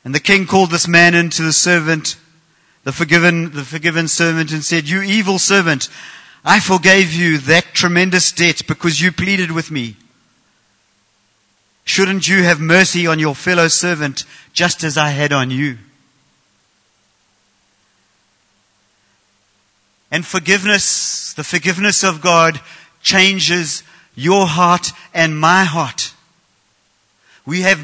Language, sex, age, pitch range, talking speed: English, male, 50-69, 145-185 Hz, 125 wpm